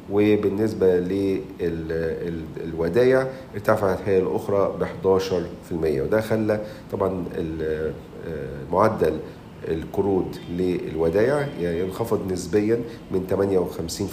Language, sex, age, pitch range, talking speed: Arabic, male, 50-69, 85-105 Hz, 75 wpm